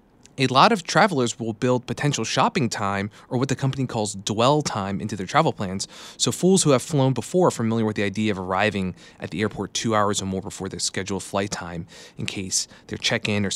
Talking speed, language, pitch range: 225 wpm, English, 105-130 Hz